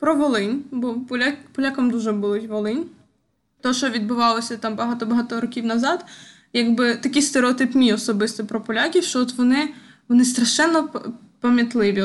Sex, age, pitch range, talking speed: female, 20-39, 230-285 Hz, 135 wpm